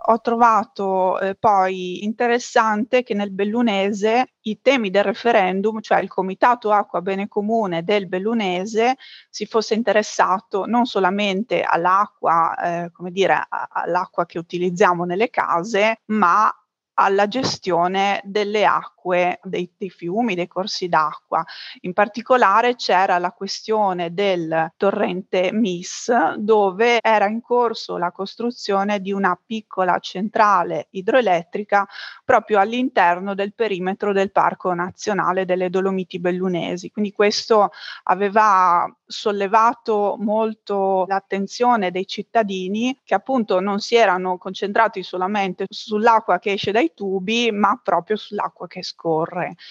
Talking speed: 120 wpm